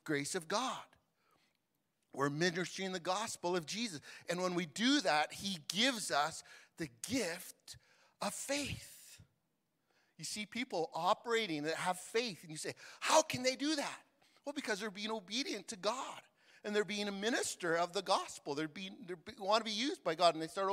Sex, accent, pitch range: male, American, 155-215 Hz